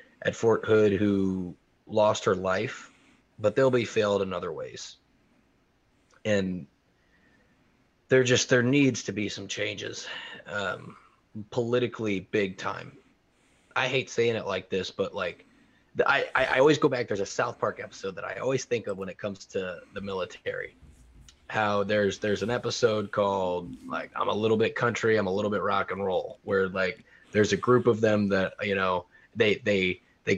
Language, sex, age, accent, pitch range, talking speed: English, male, 20-39, American, 95-125 Hz, 175 wpm